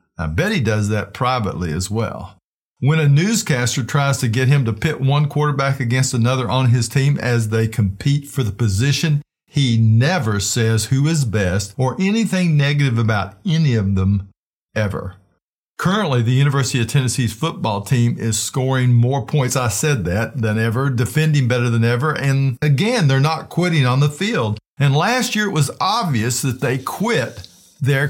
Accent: American